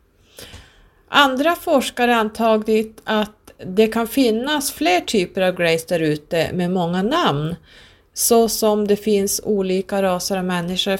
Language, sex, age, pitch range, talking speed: Swedish, female, 30-49, 165-210 Hz, 130 wpm